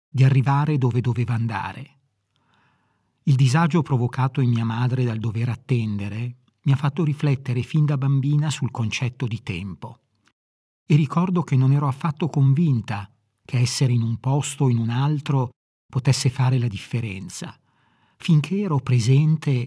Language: Italian